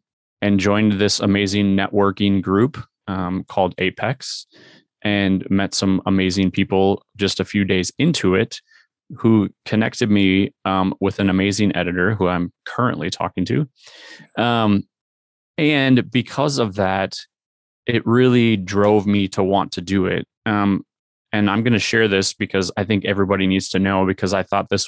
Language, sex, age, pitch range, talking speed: English, male, 20-39, 95-110 Hz, 155 wpm